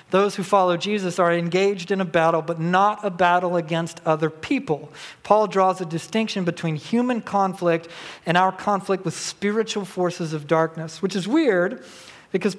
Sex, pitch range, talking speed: male, 165-200 Hz, 165 wpm